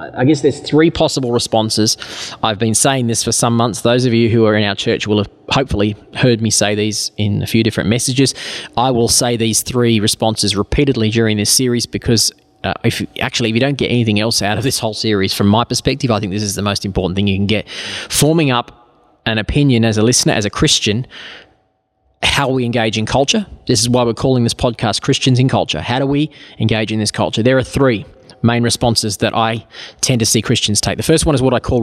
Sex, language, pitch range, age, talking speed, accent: male, English, 110-130 Hz, 20-39, 235 wpm, Australian